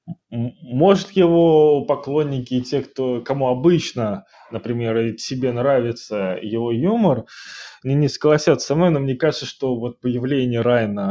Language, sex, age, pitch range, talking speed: Ukrainian, male, 20-39, 125-160 Hz, 135 wpm